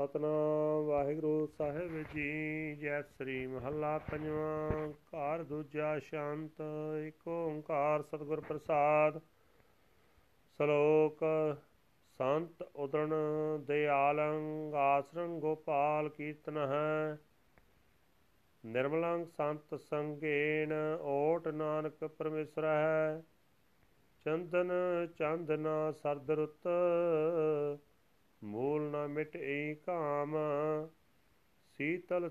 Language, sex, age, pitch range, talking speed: Punjabi, male, 40-59, 150-170 Hz, 70 wpm